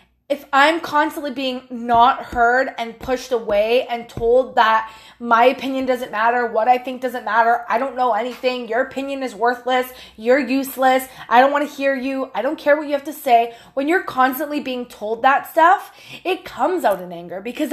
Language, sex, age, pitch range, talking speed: English, female, 20-39, 225-280 Hz, 195 wpm